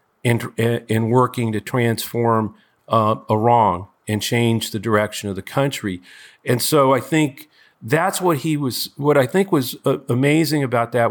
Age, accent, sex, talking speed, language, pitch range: 40-59, American, male, 175 wpm, English, 110-135 Hz